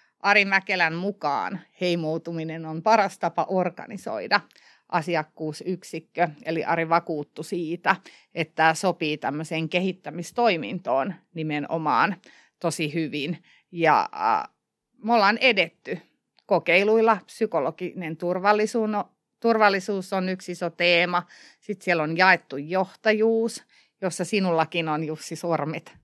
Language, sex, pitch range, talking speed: Finnish, female, 165-195 Hz, 95 wpm